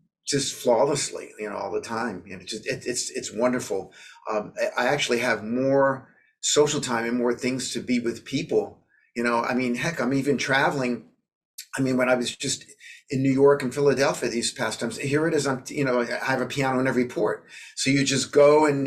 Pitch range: 120-145 Hz